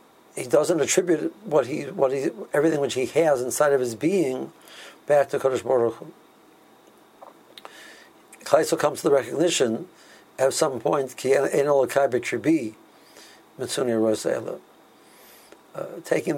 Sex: male